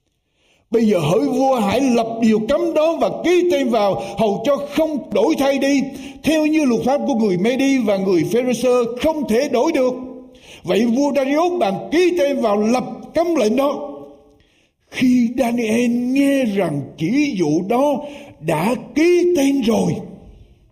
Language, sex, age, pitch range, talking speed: Vietnamese, male, 60-79, 215-285 Hz, 160 wpm